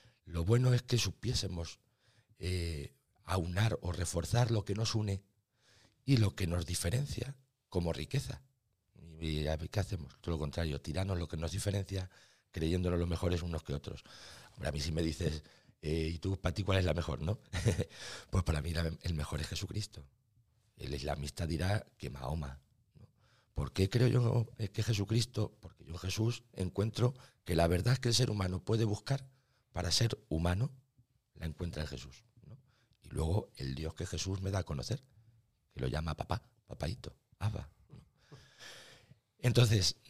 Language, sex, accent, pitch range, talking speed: Spanish, male, Spanish, 80-115 Hz, 170 wpm